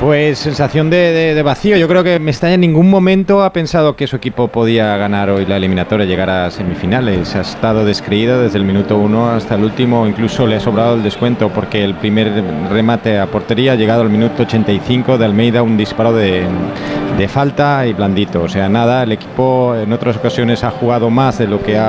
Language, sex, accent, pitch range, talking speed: Spanish, male, Spanish, 110-140 Hz, 215 wpm